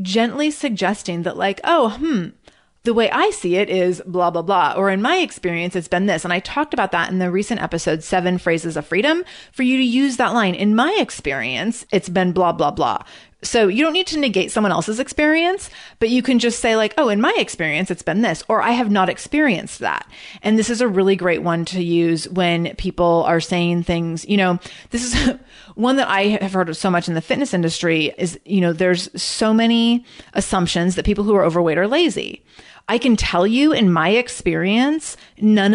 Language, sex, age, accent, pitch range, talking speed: English, female, 30-49, American, 175-230 Hz, 215 wpm